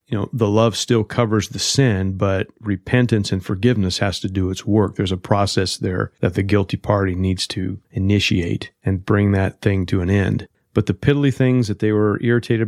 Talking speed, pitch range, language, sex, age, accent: 205 wpm, 95-110 Hz, English, male, 40-59, American